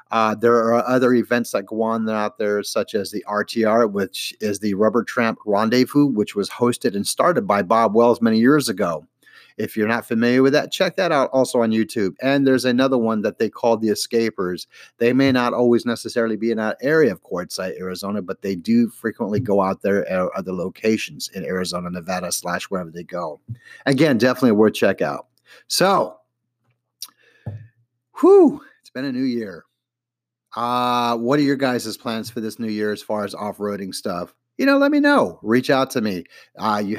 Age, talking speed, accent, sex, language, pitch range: 40-59, 195 wpm, American, male, English, 105-125 Hz